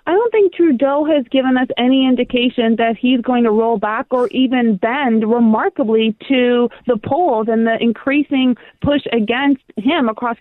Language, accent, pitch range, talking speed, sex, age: English, American, 240-285 Hz, 165 wpm, female, 30-49